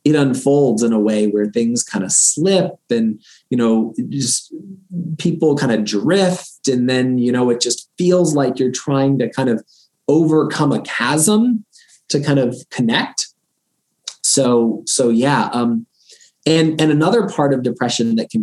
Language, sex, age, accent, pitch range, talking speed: English, male, 20-39, American, 110-160 Hz, 165 wpm